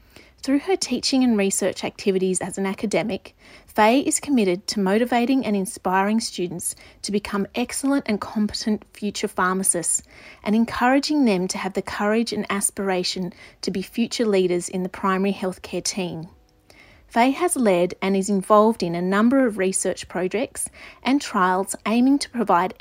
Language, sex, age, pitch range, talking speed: English, female, 30-49, 190-235 Hz, 155 wpm